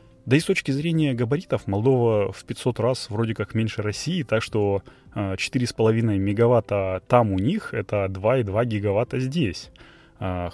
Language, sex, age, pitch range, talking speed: Russian, male, 20-39, 100-130 Hz, 140 wpm